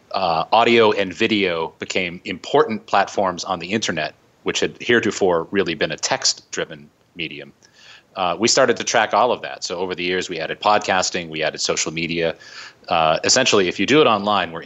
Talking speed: 190 wpm